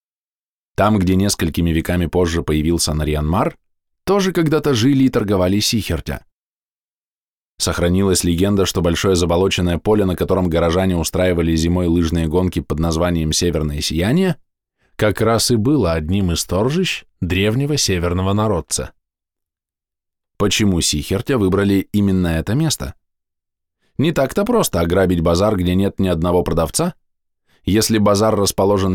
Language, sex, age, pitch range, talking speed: Russian, male, 20-39, 85-105 Hz, 120 wpm